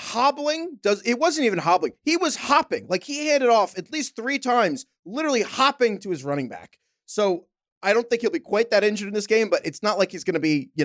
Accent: American